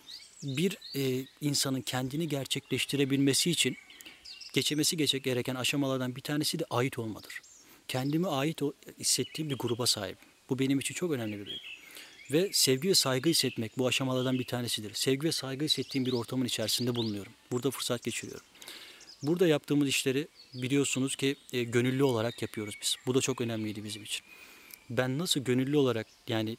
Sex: male